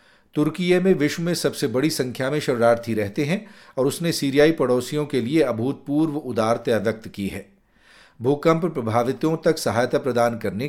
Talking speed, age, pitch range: 165 wpm, 40-59, 115-150 Hz